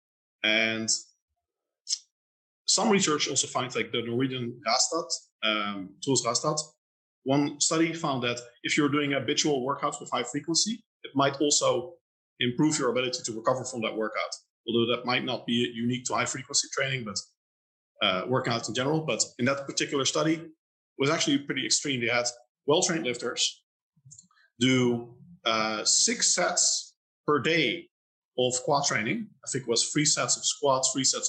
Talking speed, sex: 155 wpm, male